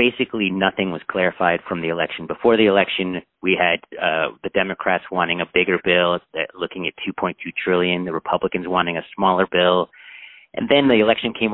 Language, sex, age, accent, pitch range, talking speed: English, male, 30-49, American, 90-105 Hz, 180 wpm